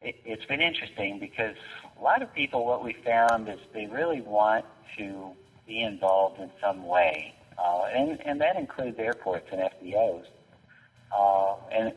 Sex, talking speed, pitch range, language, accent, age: male, 155 wpm, 95-115 Hz, English, American, 50-69